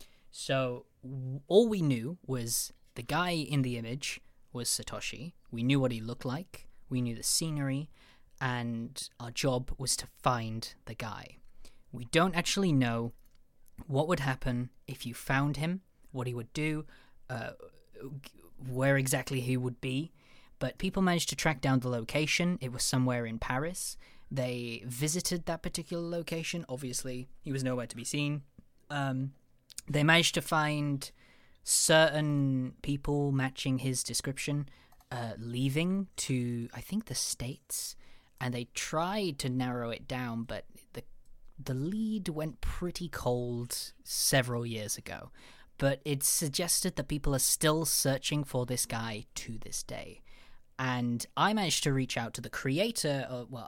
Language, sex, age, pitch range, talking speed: English, male, 20-39, 125-150 Hz, 150 wpm